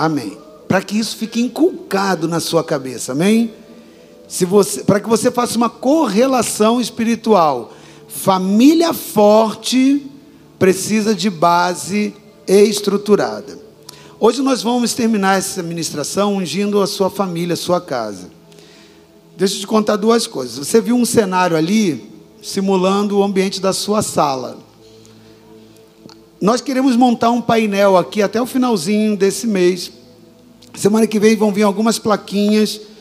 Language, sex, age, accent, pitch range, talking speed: Portuguese, male, 50-69, Brazilian, 185-230 Hz, 130 wpm